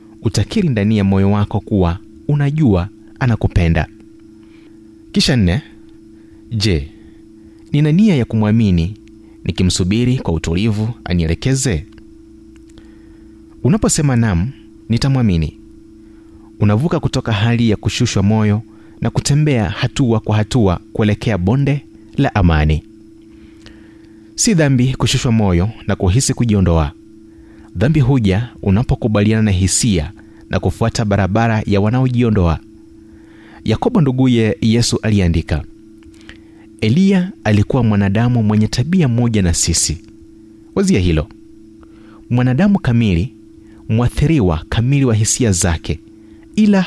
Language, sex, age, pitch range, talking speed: Swahili, male, 30-49, 105-120 Hz, 100 wpm